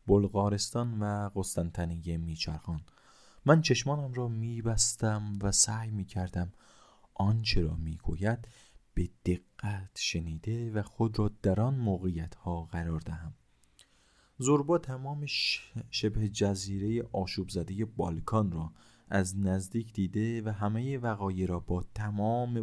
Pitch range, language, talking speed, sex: 90-115 Hz, Persian, 110 wpm, male